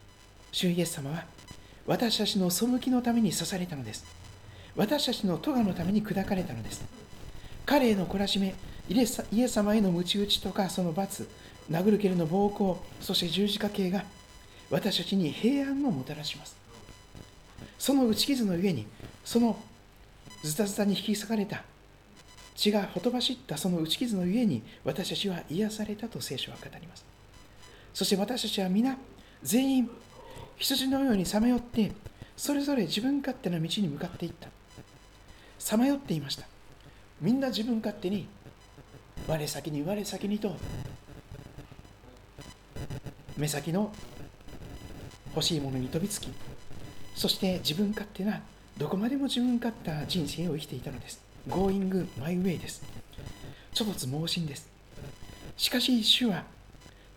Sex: male